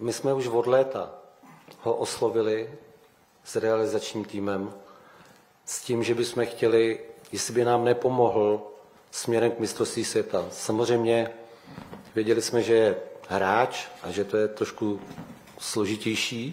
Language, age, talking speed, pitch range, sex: Czech, 40-59, 125 wpm, 100-120 Hz, male